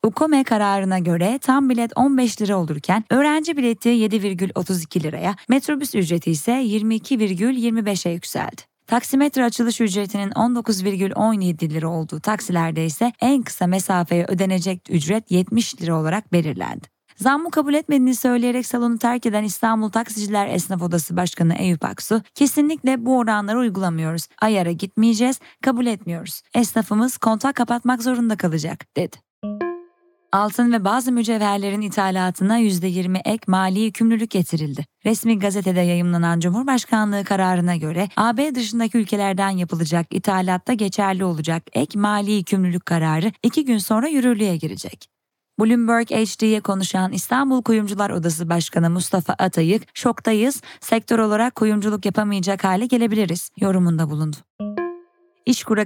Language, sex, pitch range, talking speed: Turkish, female, 185-235 Hz, 120 wpm